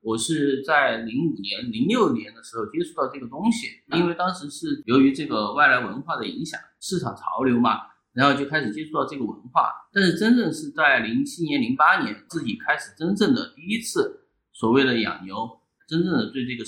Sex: male